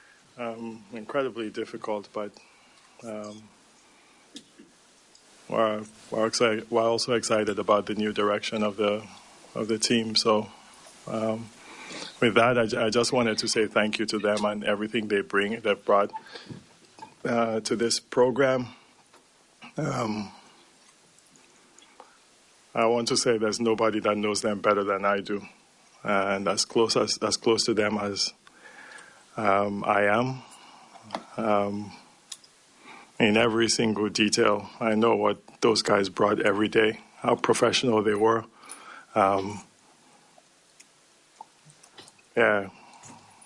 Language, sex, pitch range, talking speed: English, male, 105-115 Hz, 125 wpm